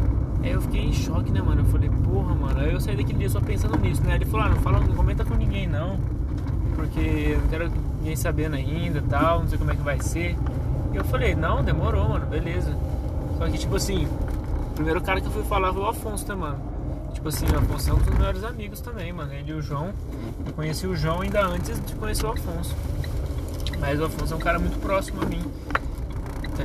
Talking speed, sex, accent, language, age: 240 wpm, male, Brazilian, Portuguese, 20-39